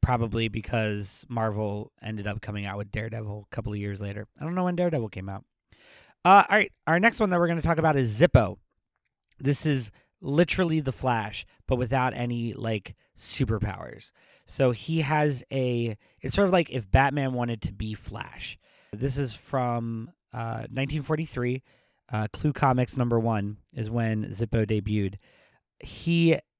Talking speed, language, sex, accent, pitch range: 165 wpm, English, male, American, 110-145 Hz